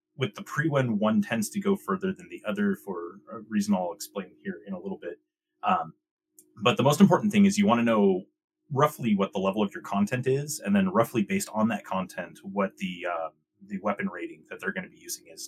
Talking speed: 235 wpm